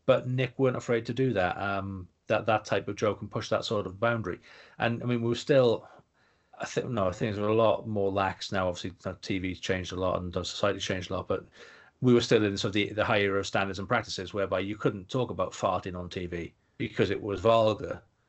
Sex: male